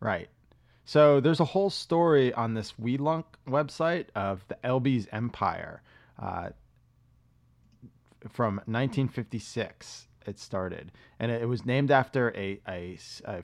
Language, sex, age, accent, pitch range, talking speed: English, male, 30-49, American, 105-130 Hz, 120 wpm